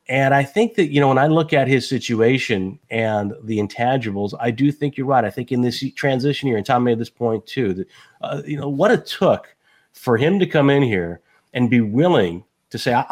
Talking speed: 230 wpm